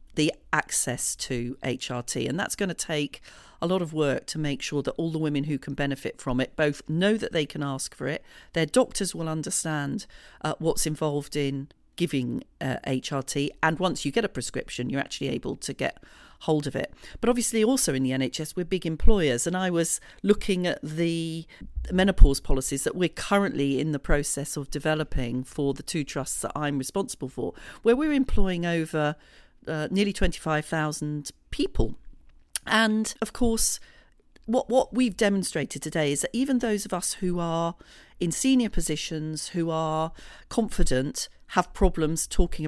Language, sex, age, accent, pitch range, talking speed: English, female, 40-59, British, 145-185 Hz, 175 wpm